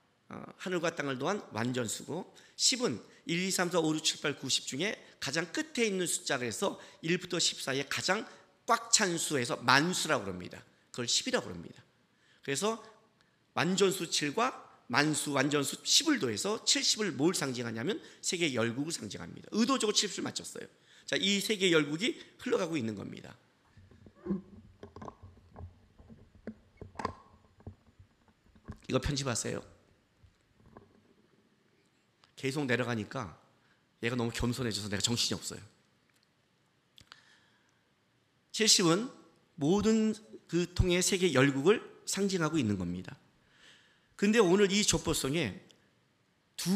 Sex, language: male, Korean